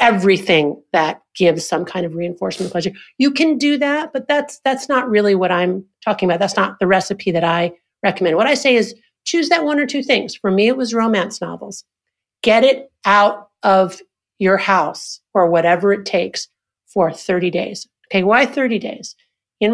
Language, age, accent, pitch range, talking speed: English, 50-69, American, 185-245 Hz, 190 wpm